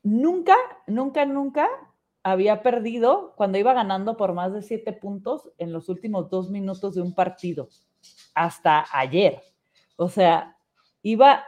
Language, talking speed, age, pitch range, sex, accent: Spanish, 135 wpm, 30-49, 170-220 Hz, female, Mexican